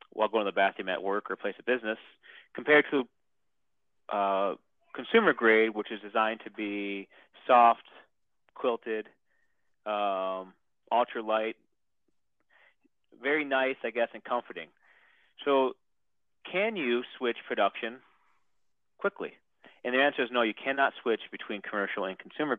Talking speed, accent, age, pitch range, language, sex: 130 wpm, American, 30-49, 100-130 Hz, English, male